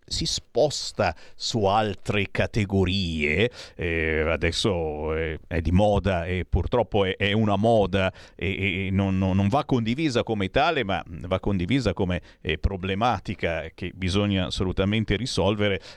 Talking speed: 135 wpm